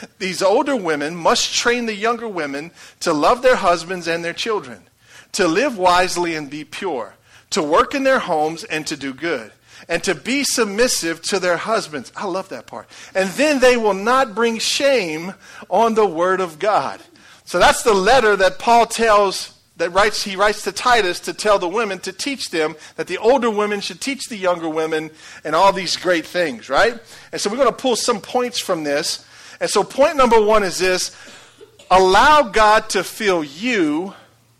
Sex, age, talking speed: male, 40-59, 190 wpm